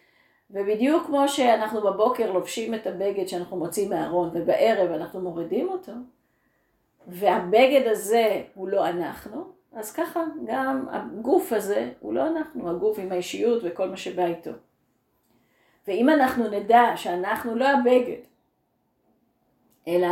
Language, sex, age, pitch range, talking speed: Hebrew, female, 40-59, 190-275 Hz, 120 wpm